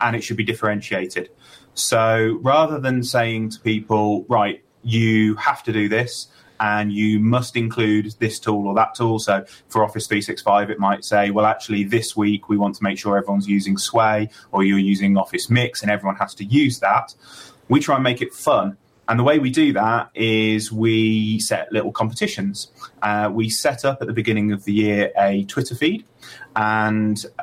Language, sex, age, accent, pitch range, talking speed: English, male, 30-49, British, 105-120 Hz, 190 wpm